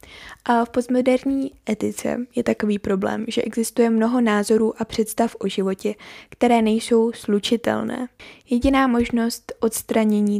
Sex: female